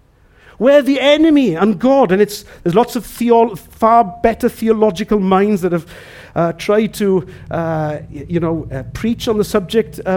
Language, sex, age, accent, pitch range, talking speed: English, male, 50-69, British, 130-215 Hz, 170 wpm